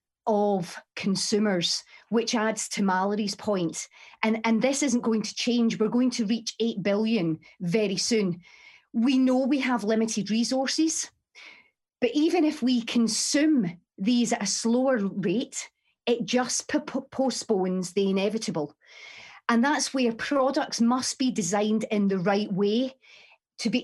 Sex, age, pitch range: female, 40-59, 200-245 Hz